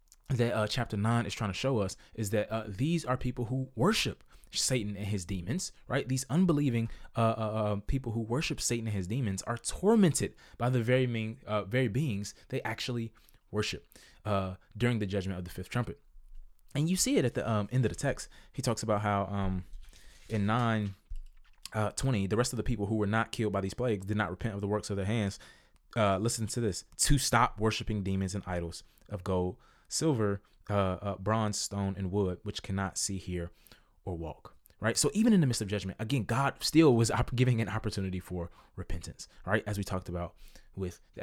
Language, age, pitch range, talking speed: English, 20-39, 100-125 Hz, 210 wpm